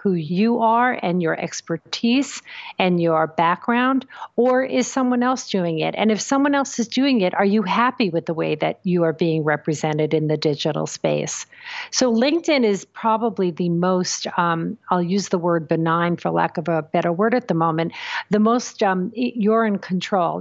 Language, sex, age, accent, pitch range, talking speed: English, female, 50-69, American, 170-220 Hz, 190 wpm